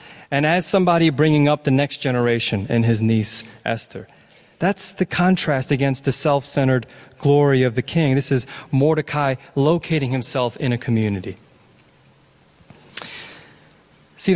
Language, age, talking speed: English, 20-39, 130 wpm